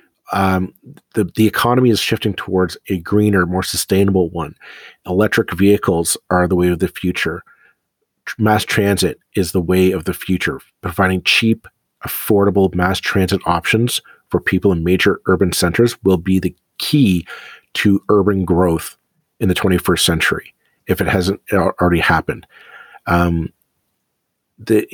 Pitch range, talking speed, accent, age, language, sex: 90-110 Hz, 140 wpm, American, 40-59, English, male